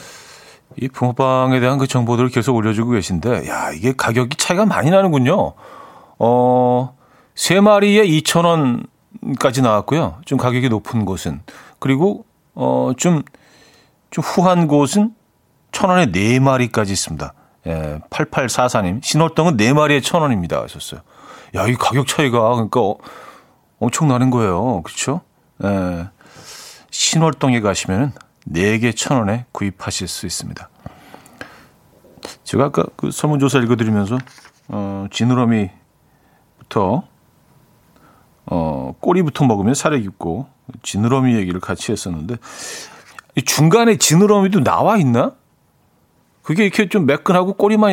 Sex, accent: male, native